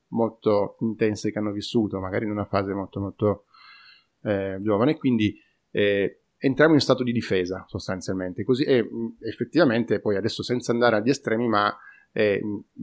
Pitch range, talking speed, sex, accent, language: 100-120 Hz, 155 wpm, male, native, Italian